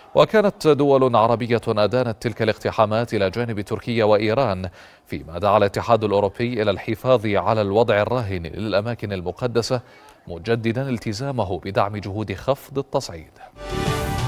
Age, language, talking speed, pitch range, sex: 30-49, Arabic, 115 wpm, 100-125 Hz, male